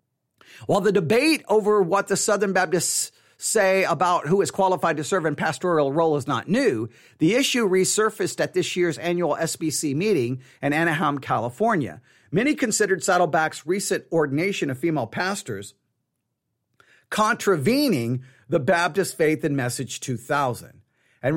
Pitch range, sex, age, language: 155-210 Hz, male, 50-69, English